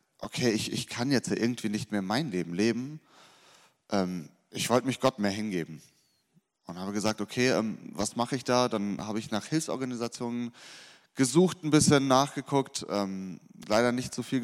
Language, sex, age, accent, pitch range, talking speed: German, male, 30-49, German, 105-130 Hz, 160 wpm